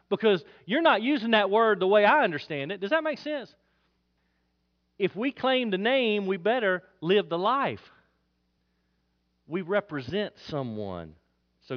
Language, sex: English, male